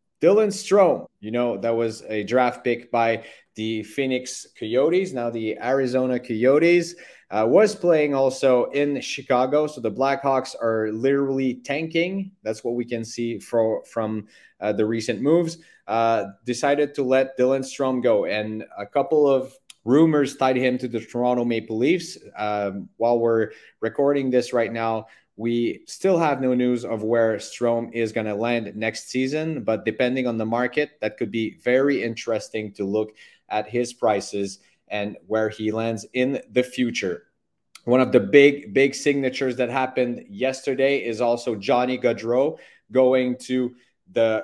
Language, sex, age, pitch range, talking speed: English, male, 30-49, 115-135 Hz, 160 wpm